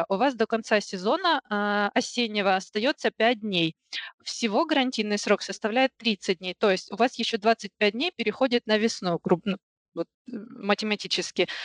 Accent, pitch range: native, 200-230 Hz